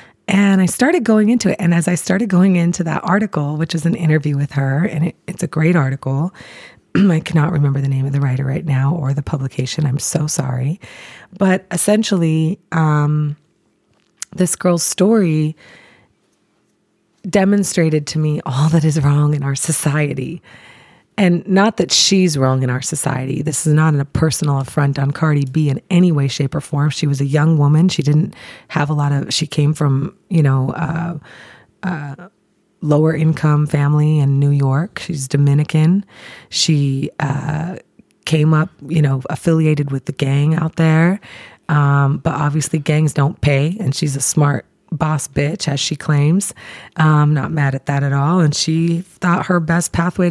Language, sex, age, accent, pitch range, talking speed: English, female, 30-49, American, 145-185 Hz, 175 wpm